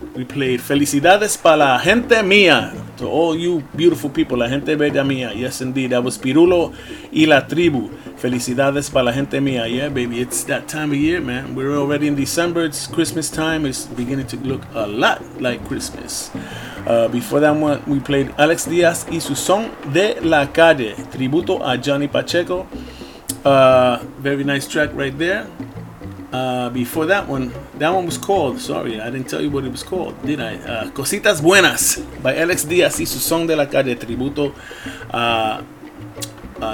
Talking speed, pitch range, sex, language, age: 180 wpm, 130-160 Hz, male, English, 30-49